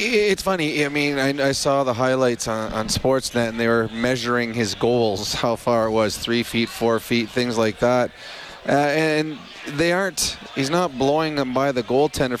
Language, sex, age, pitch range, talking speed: English, male, 30-49, 125-155 Hz, 195 wpm